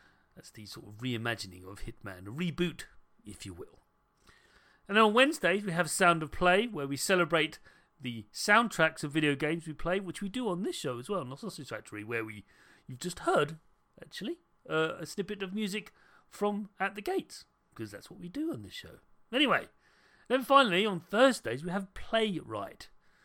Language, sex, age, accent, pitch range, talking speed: English, male, 40-59, British, 125-200 Hz, 185 wpm